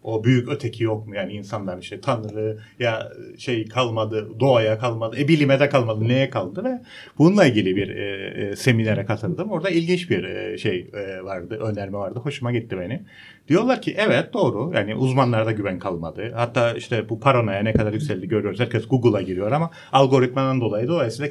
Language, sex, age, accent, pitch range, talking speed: Turkish, male, 40-59, native, 110-145 Hz, 175 wpm